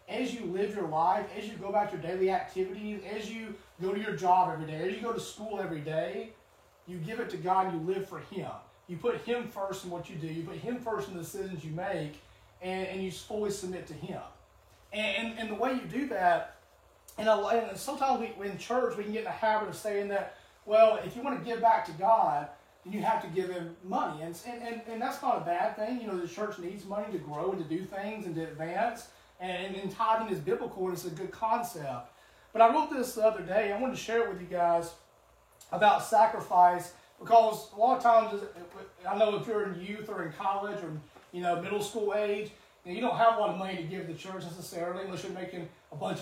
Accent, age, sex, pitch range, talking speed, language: American, 30-49, male, 175-220 Hz, 245 wpm, English